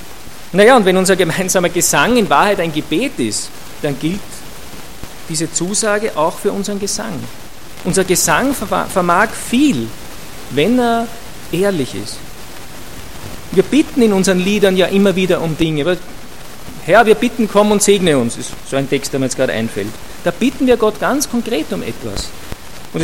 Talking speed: 165 wpm